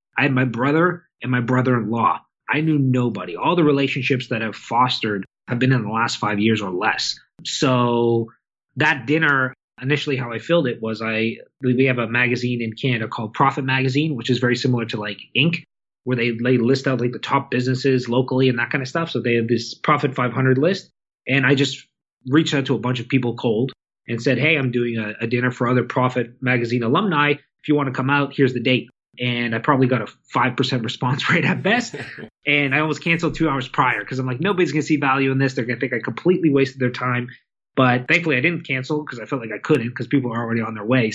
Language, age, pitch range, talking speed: English, 20-39, 120-150 Hz, 230 wpm